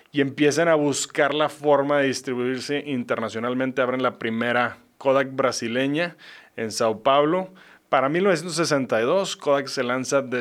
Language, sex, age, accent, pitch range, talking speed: English, male, 20-39, Mexican, 125-150 Hz, 135 wpm